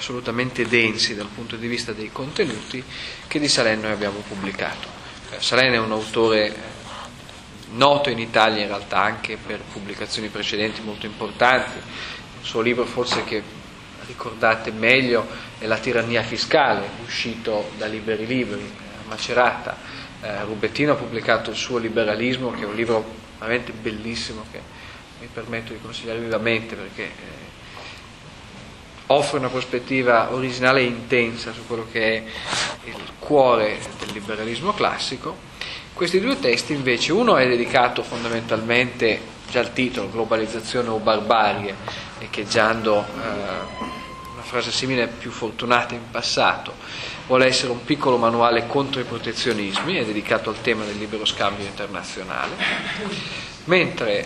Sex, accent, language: male, native, Italian